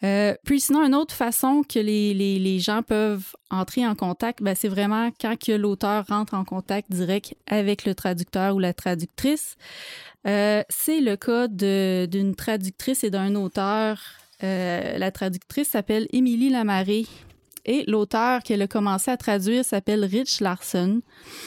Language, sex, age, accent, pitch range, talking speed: French, female, 20-39, Canadian, 190-235 Hz, 160 wpm